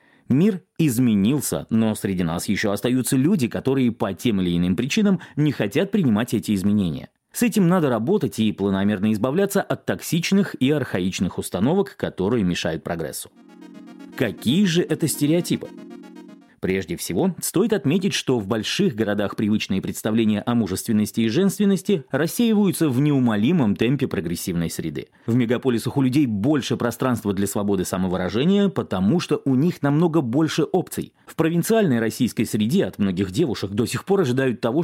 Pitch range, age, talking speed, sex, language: 105-160 Hz, 30-49, 150 wpm, male, Russian